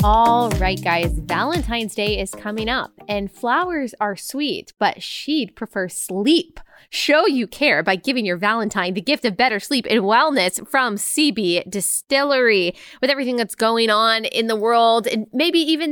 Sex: female